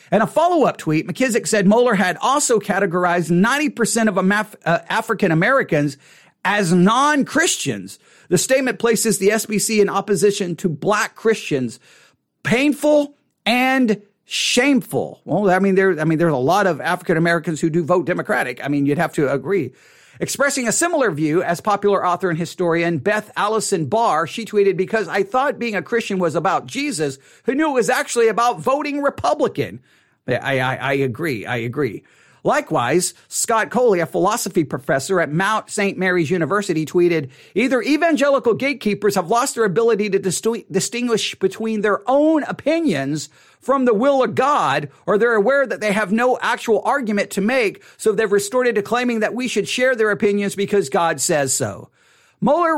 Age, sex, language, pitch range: 40-59, male, English, 175-235 Hz